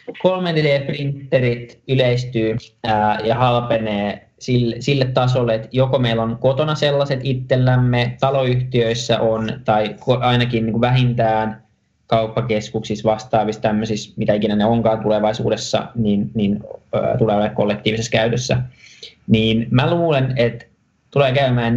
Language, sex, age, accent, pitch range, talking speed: Finnish, male, 20-39, native, 110-125 Hz, 110 wpm